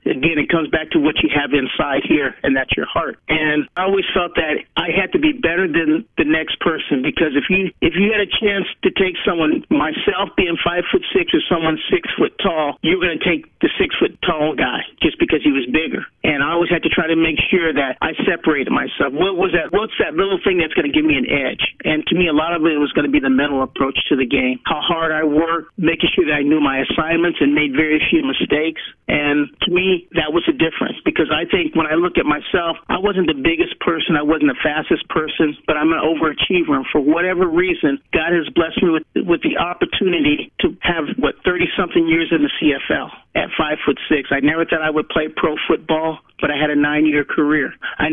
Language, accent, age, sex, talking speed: English, American, 50-69, male, 235 wpm